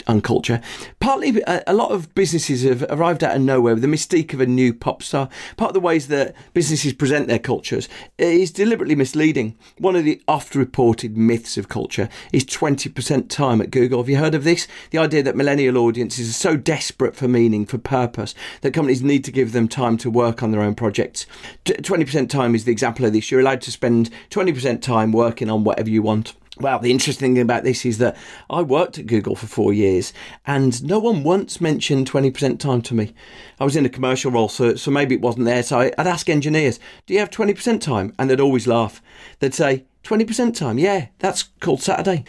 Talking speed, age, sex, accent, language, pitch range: 210 wpm, 40-59, male, British, English, 120-155 Hz